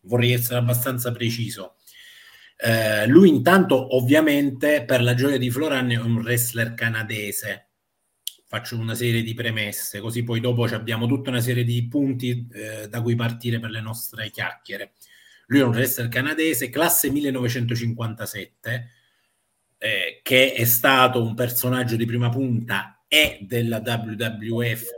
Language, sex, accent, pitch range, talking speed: Italian, male, native, 115-130 Hz, 140 wpm